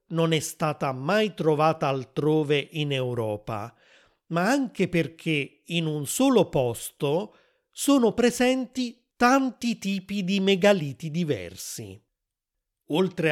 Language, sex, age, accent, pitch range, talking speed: Italian, male, 30-49, native, 150-195 Hz, 105 wpm